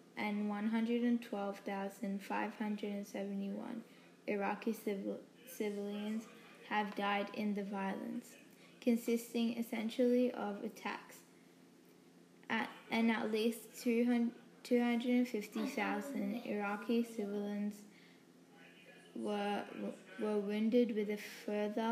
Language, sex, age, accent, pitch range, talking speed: English, female, 10-29, Australian, 205-230 Hz, 110 wpm